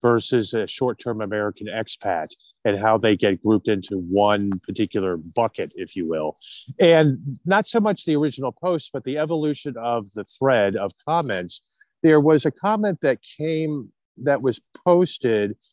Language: English